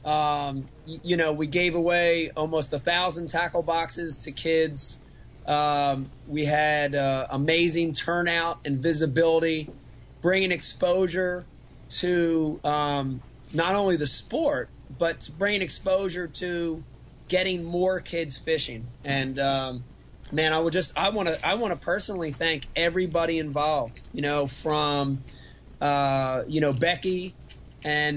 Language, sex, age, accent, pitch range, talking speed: English, male, 30-49, American, 145-175 Hz, 130 wpm